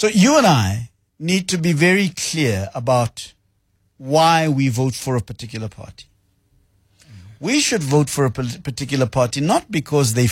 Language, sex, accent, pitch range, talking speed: English, male, South African, 100-140 Hz, 155 wpm